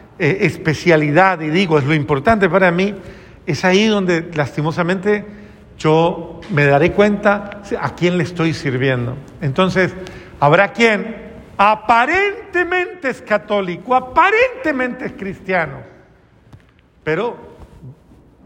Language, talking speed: Spanish, 100 wpm